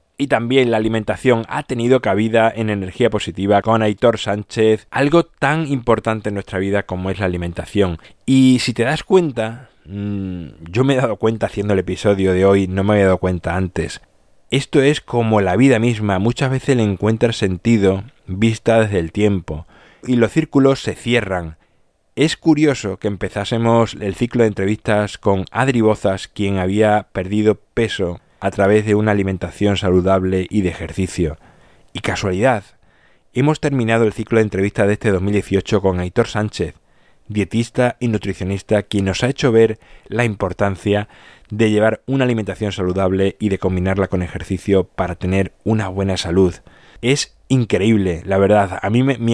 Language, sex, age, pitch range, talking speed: Spanish, male, 20-39, 95-120 Hz, 165 wpm